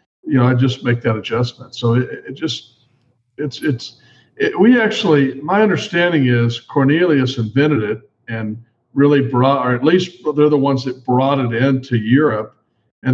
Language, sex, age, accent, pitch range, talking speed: English, male, 50-69, American, 120-140 Hz, 165 wpm